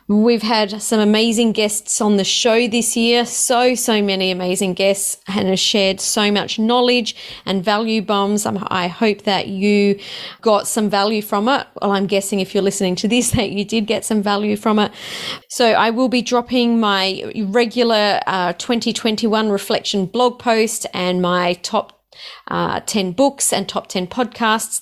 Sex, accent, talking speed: female, Australian, 170 wpm